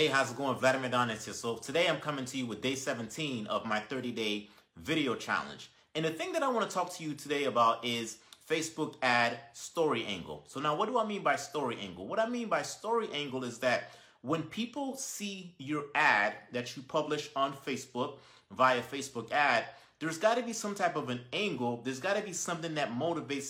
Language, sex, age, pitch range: English, male, 30-49, 130-180 Hz